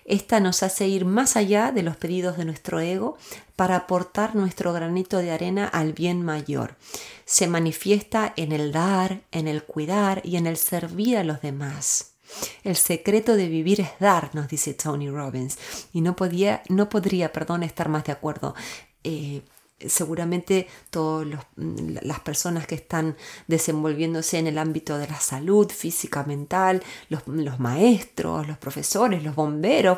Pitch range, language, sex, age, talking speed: 155-205 Hz, Spanish, female, 30-49, 155 wpm